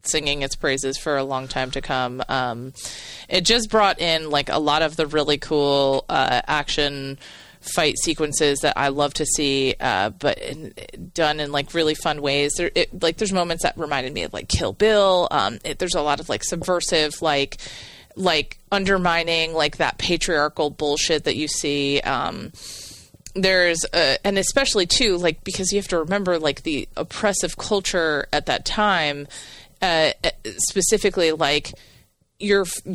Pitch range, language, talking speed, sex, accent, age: 145-185 Hz, English, 170 wpm, female, American, 30-49